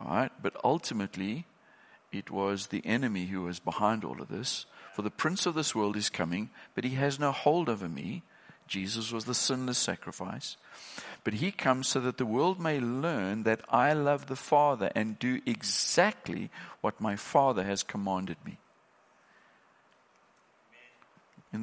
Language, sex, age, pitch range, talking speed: English, male, 50-69, 100-130 Hz, 160 wpm